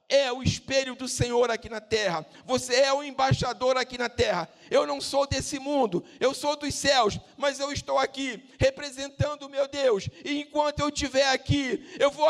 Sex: male